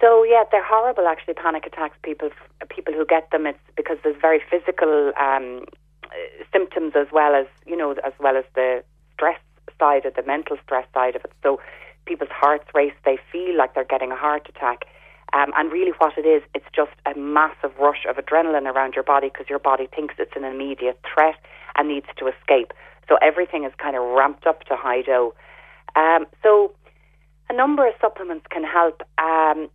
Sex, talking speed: female, 195 wpm